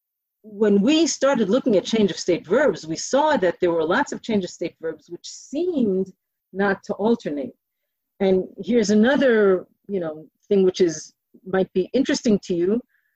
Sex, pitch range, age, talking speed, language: female, 180-240 Hz, 40-59, 175 wpm, English